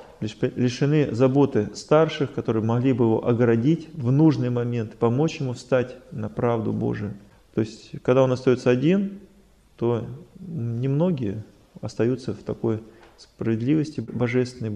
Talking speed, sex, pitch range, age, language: 120 wpm, male, 115-145 Hz, 20-39, Russian